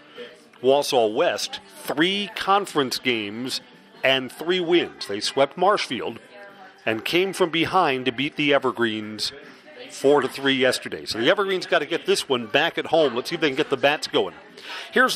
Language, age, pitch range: English, 40-59, 135-210 Hz